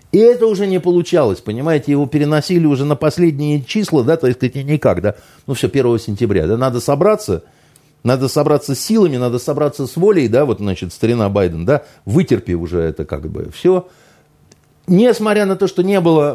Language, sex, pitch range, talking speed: Russian, male, 100-160 Hz, 185 wpm